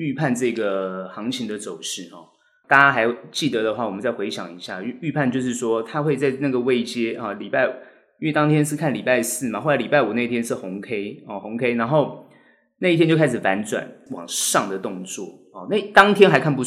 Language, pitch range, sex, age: Chinese, 105-145 Hz, male, 20-39